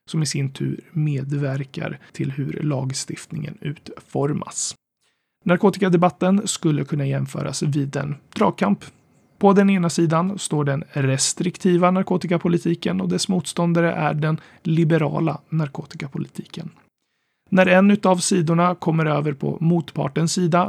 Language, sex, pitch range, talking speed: Swedish, male, 145-180 Hz, 115 wpm